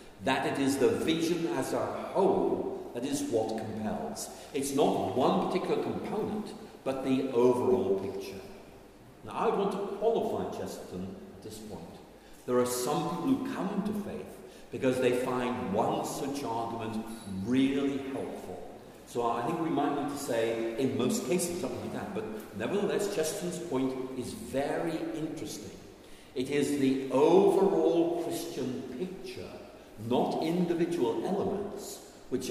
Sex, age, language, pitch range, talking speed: male, 50-69, Danish, 115-180 Hz, 140 wpm